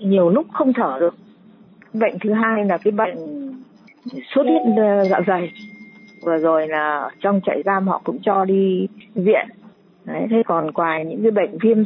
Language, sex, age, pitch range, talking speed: Vietnamese, female, 20-39, 175-230 Hz, 170 wpm